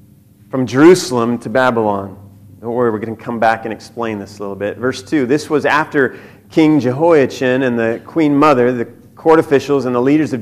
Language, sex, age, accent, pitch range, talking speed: English, male, 40-59, American, 105-155 Hz, 200 wpm